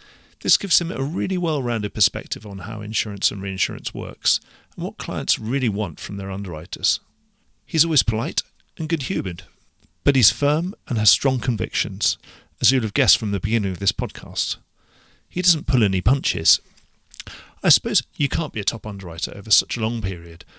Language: English